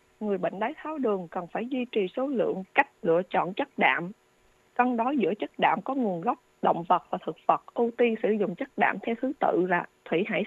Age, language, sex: 20-39, Vietnamese, female